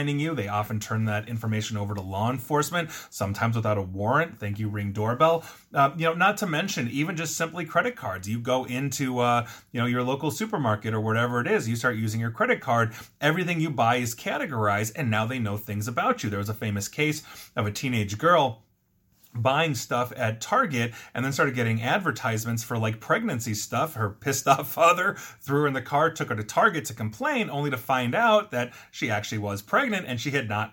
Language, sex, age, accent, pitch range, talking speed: English, male, 30-49, American, 110-145 Hz, 215 wpm